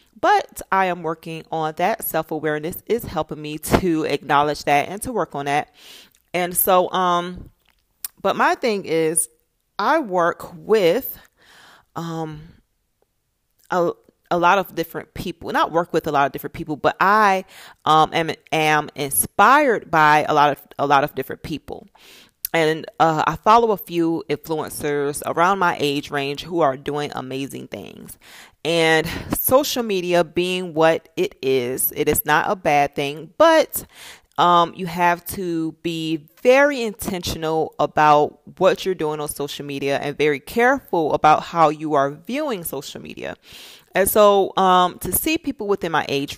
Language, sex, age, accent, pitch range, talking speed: English, female, 30-49, American, 150-180 Hz, 160 wpm